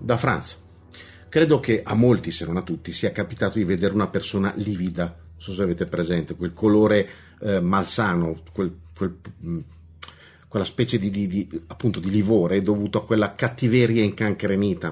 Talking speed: 170 wpm